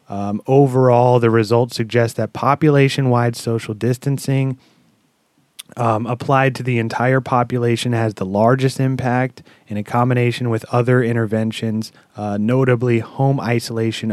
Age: 30-49